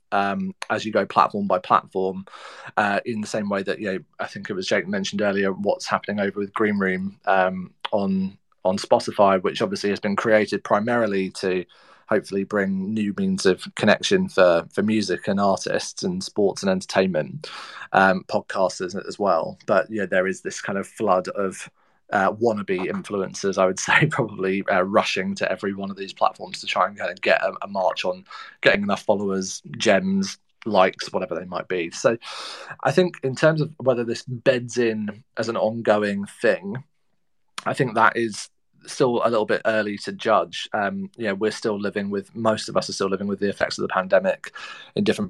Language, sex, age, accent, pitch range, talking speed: English, male, 20-39, British, 95-115 Hz, 195 wpm